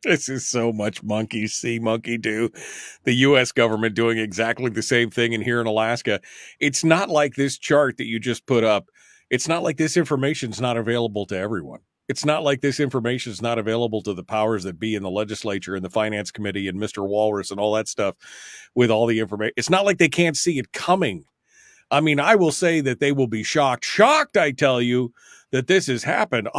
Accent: American